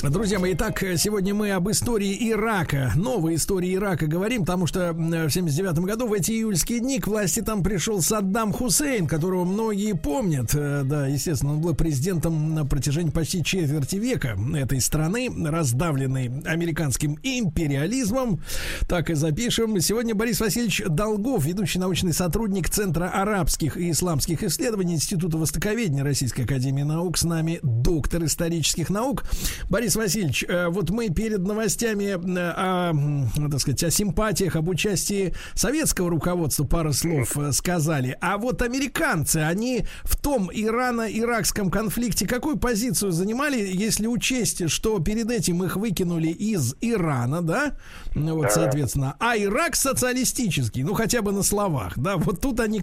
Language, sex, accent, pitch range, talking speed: Russian, male, native, 155-215 Hz, 140 wpm